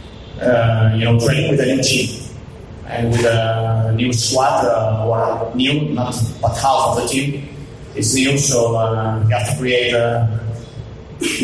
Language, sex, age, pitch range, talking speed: English, male, 30-49, 115-130 Hz, 170 wpm